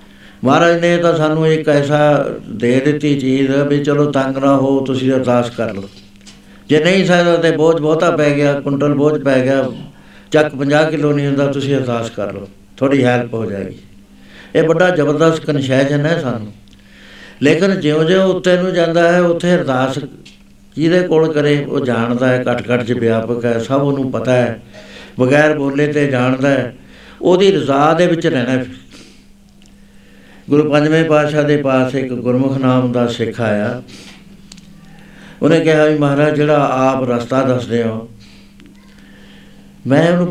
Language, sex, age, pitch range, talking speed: Punjabi, male, 60-79, 120-155 Hz, 155 wpm